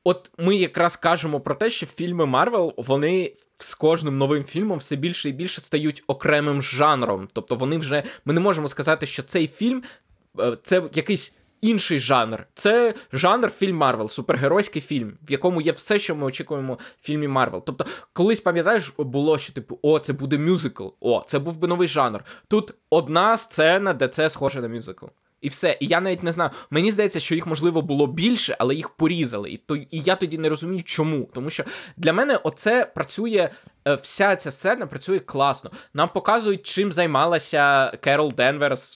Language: Ukrainian